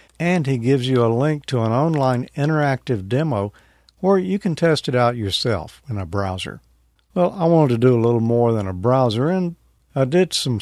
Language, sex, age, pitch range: English, male, 50-69, 105-140 Hz